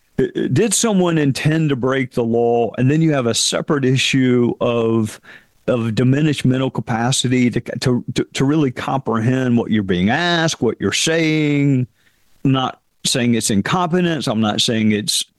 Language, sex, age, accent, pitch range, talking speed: English, male, 50-69, American, 115-155 Hz, 160 wpm